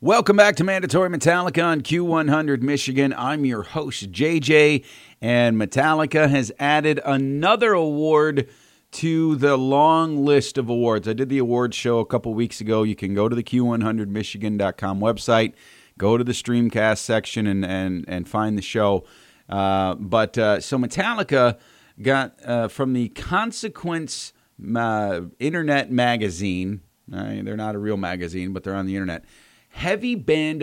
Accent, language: American, English